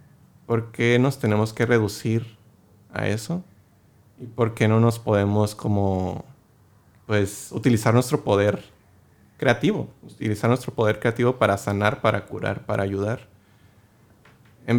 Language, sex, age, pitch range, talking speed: English, male, 30-49, 100-125 Hz, 120 wpm